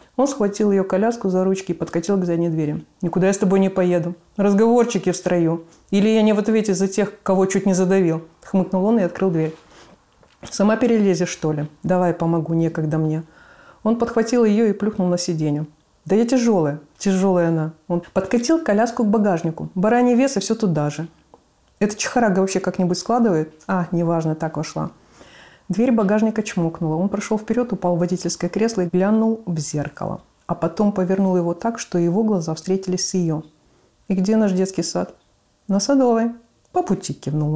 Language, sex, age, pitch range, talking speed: Russian, female, 30-49, 170-215 Hz, 175 wpm